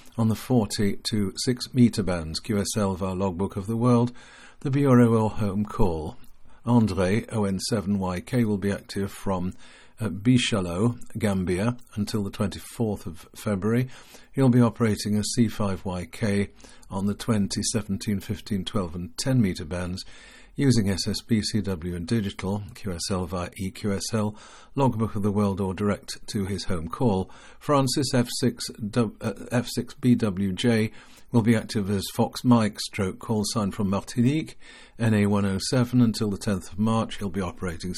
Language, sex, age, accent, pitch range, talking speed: English, male, 50-69, British, 95-115 Hz, 145 wpm